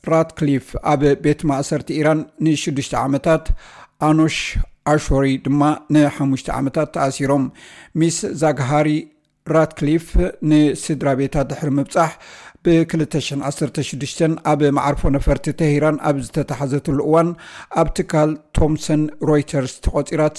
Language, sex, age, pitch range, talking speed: Amharic, male, 60-79, 140-155 Hz, 100 wpm